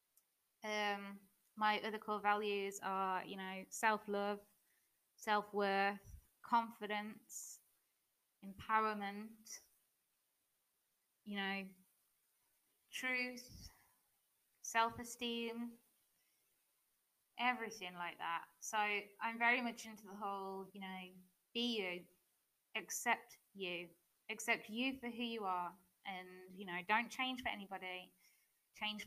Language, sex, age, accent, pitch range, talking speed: English, female, 20-39, British, 185-220 Hz, 95 wpm